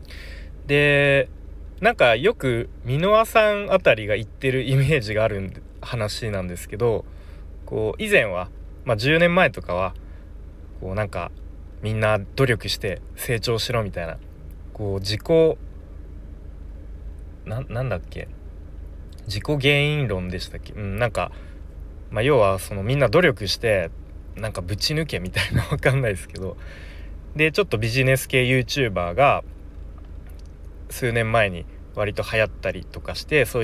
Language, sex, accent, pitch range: Japanese, male, native, 75-125 Hz